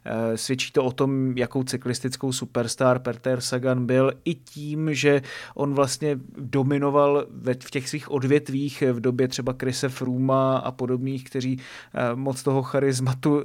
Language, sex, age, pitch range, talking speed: Czech, male, 30-49, 125-145 Hz, 140 wpm